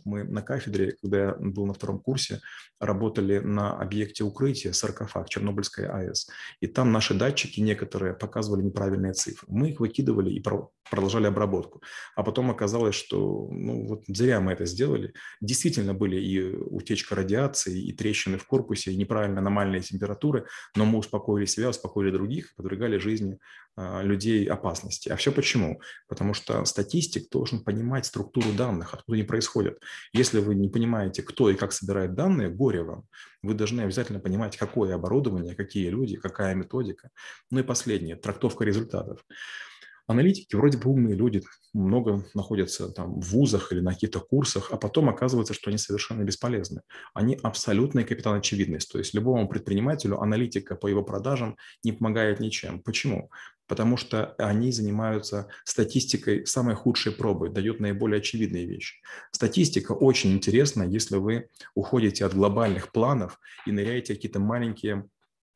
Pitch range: 100-120 Hz